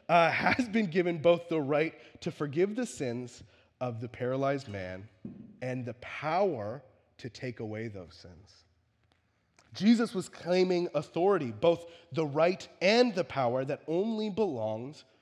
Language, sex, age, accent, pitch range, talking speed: English, male, 30-49, American, 110-170 Hz, 140 wpm